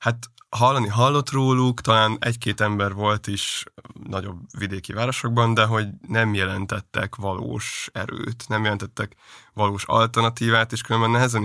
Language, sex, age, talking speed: Hungarian, male, 20-39, 130 wpm